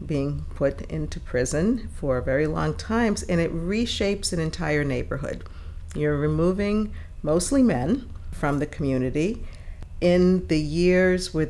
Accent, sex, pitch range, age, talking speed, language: American, female, 110-170 Hz, 50-69, 130 wpm, English